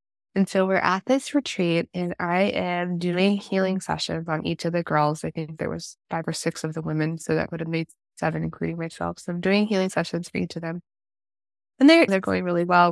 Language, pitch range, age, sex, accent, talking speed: English, 165-195 Hz, 20-39, female, American, 230 wpm